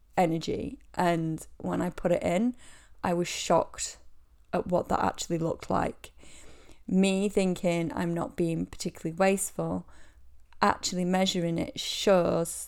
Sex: female